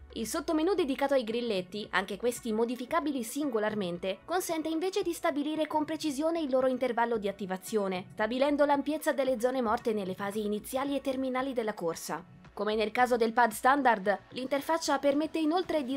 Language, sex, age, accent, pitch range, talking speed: Italian, female, 20-39, native, 200-275 Hz, 160 wpm